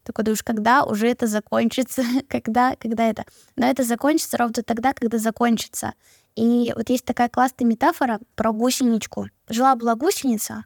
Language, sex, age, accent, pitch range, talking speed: Russian, female, 10-29, native, 230-275 Hz, 160 wpm